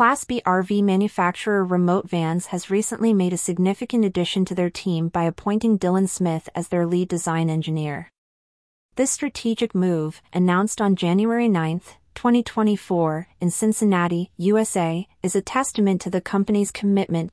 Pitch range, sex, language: 170-205 Hz, female, English